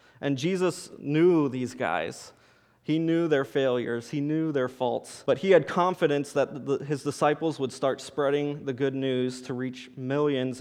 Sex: male